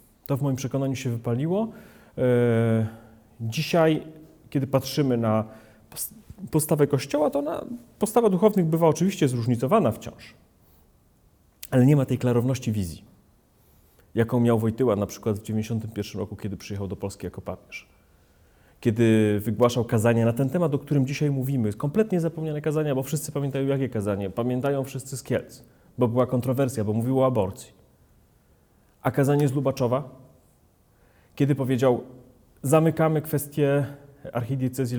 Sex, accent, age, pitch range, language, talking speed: male, native, 30-49, 115-145 Hz, Polish, 135 wpm